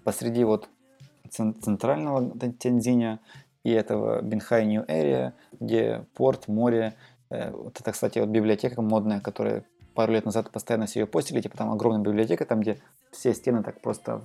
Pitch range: 110-125 Hz